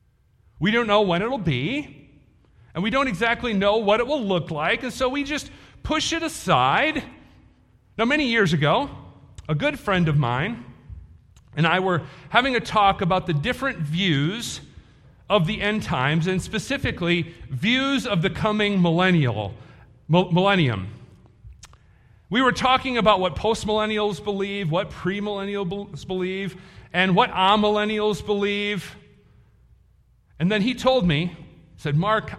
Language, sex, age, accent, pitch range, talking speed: English, male, 40-59, American, 145-215 Hz, 140 wpm